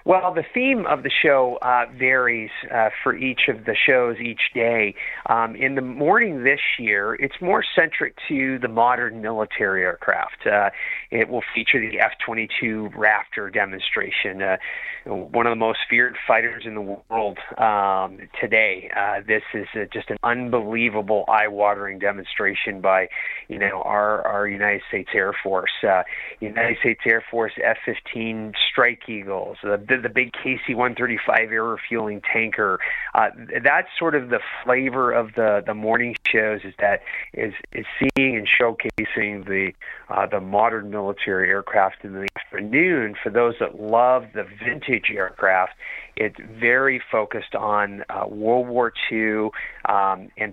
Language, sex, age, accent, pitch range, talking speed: English, male, 30-49, American, 105-125 Hz, 150 wpm